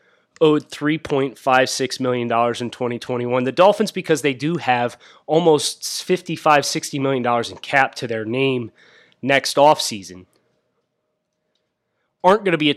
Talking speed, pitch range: 125 wpm, 125-165 Hz